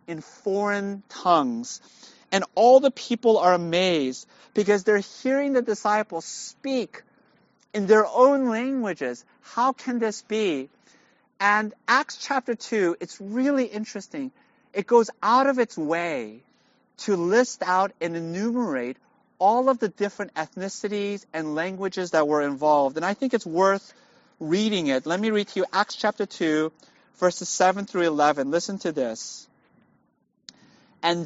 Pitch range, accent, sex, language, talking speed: 180-245 Hz, American, male, English, 140 wpm